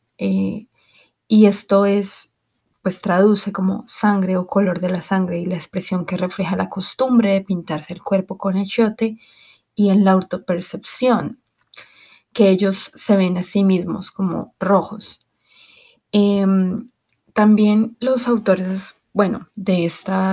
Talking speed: 135 wpm